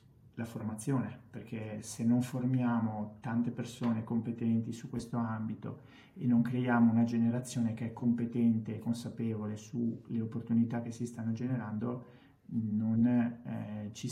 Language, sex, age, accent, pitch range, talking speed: Italian, male, 30-49, native, 115-125 Hz, 130 wpm